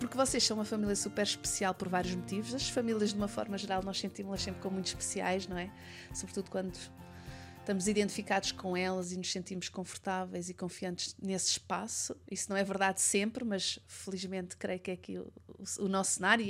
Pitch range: 190-225 Hz